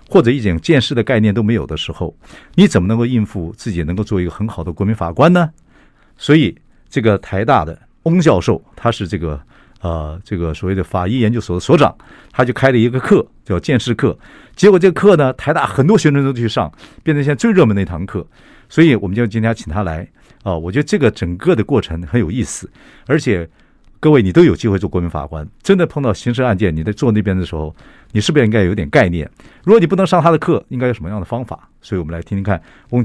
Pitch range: 95-150 Hz